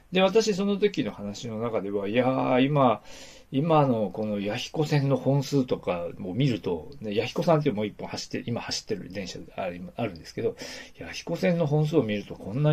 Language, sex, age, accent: Japanese, male, 40-59, native